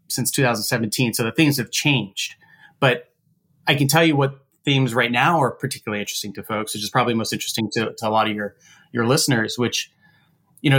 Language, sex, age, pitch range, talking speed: English, male, 30-49, 115-140 Hz, 205 wpm